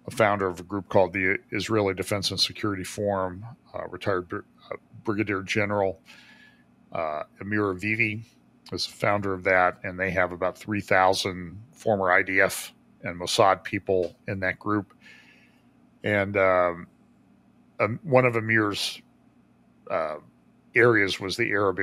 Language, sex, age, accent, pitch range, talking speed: English, male, 40-59, American, 90-110 Hz, 135 wpm